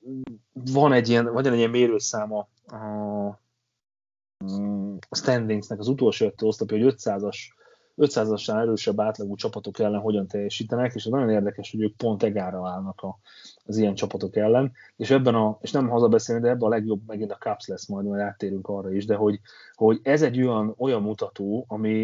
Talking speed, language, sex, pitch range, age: 170 wpm, Hungarian, male, 100-115 Hz, 30-49